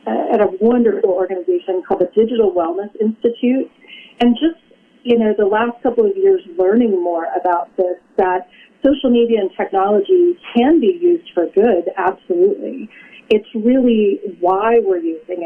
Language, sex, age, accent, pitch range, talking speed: English, female, 40-59, American, 185-245 Hz, 150 wpm